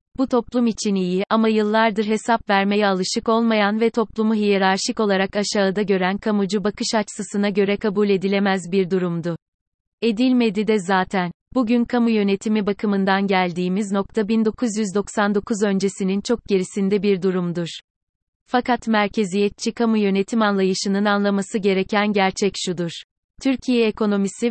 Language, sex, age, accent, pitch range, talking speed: Turkish, female, 30-49, native, 195-225 Hz, 120 wpm